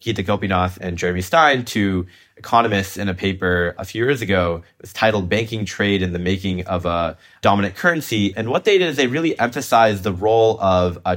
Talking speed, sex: 205 wpm, male